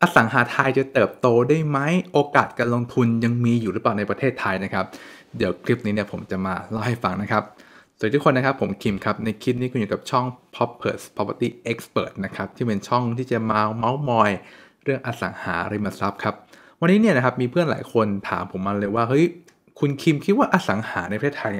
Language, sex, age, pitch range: English, male, 20-39, 105-140 Hz